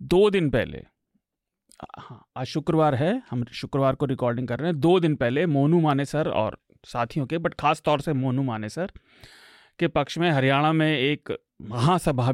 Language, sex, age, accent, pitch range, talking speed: Hindi, male, 30-49, native, 120-150 Hz, 180 wpm